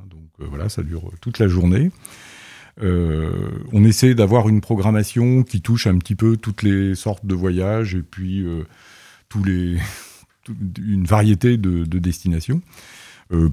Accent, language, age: French, French, 40-59